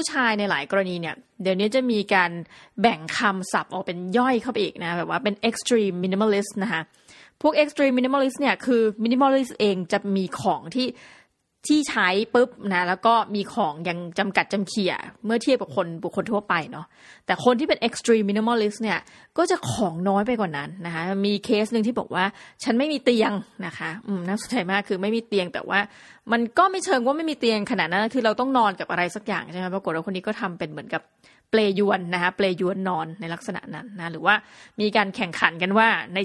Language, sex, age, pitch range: Thai, female, 20-39, 195-240 Hz